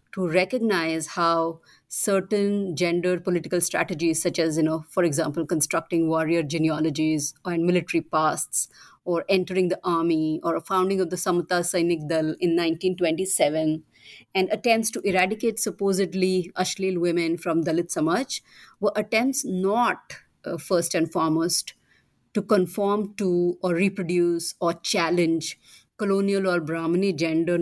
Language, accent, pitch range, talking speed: English, Indian, 165-195 Hz, 135 wpm